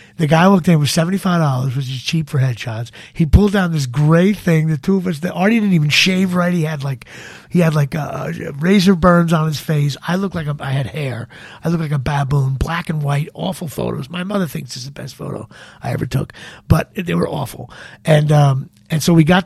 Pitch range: 140-175 Hz